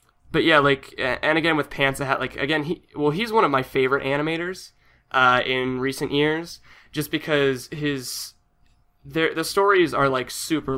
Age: 20-39